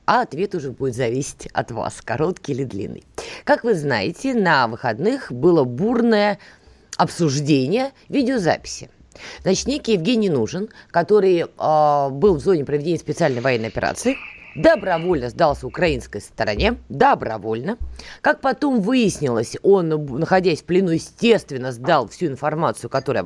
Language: Russian